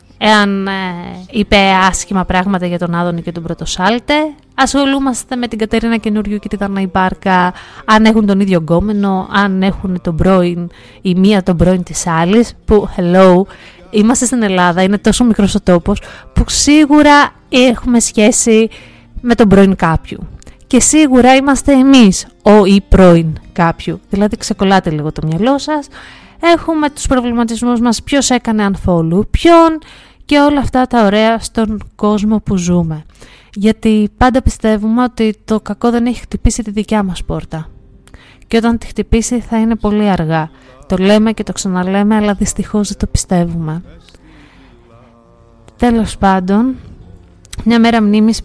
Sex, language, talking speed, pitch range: female, Greek, 150 wpm, 185-230 Hz